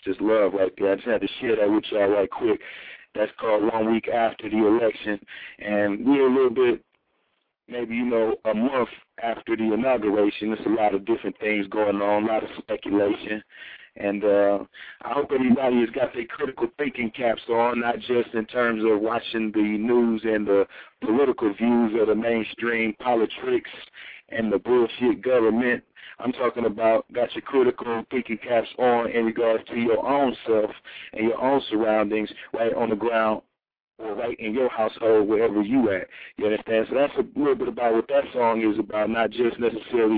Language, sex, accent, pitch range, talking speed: English, male, American, 105-120 Hz, 185 wpm